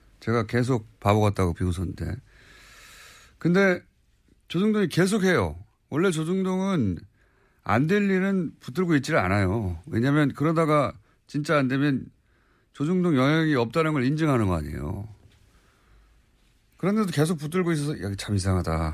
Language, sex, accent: Korean, male, native